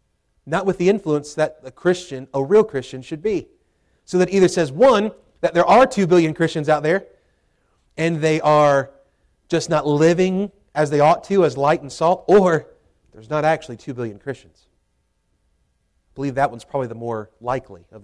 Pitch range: 150-210 Hz